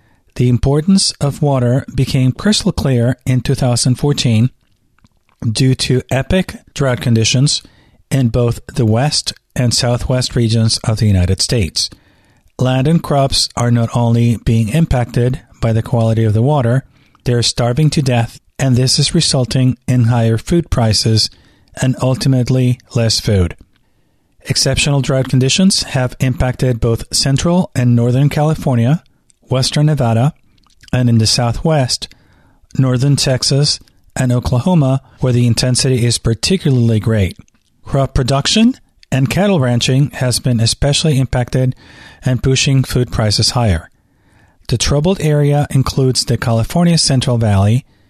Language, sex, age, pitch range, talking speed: English, male, 40-59, 115-140 Hz, 130 wpm